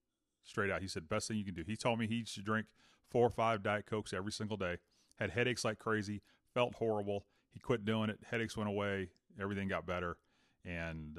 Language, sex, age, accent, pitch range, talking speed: English, male, 30-49, American, 90-115 Hz, 220 wpm